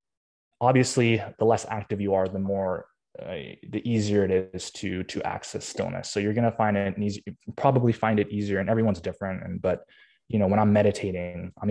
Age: 20-39